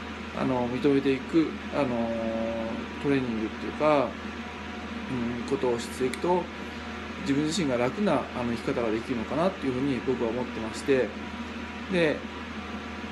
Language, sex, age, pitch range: Japanese, male, 20-39, 125-165 Hz